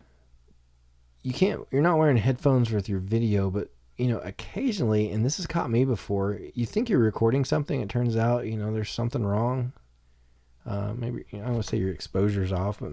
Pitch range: 90-120 Hz